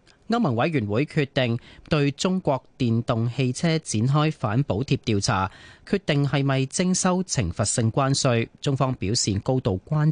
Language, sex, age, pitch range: Chinese, male, 30-49, 115-150 Hz